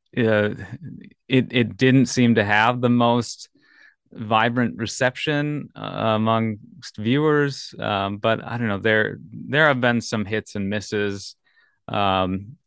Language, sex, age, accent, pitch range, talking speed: English, male, 20-39, American, 100-120 Hz, 135 wpm